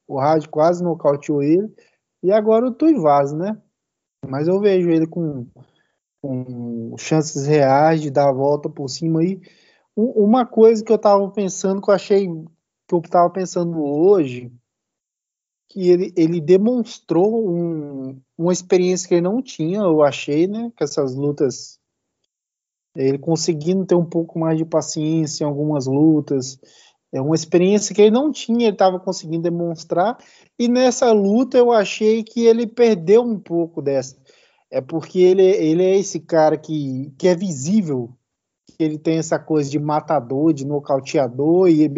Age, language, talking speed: 20-39, Portuguese, 160 wpm